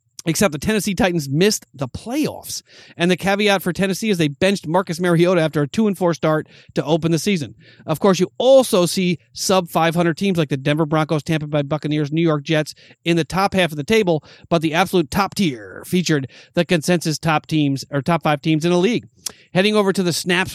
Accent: American